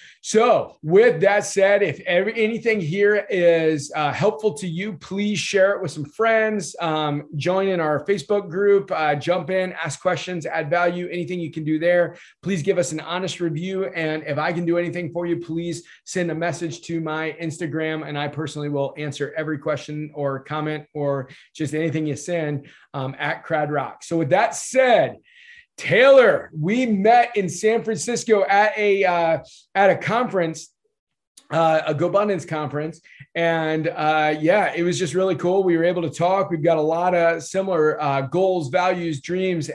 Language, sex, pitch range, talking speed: English, male, 155-190 Hz, 180 wpm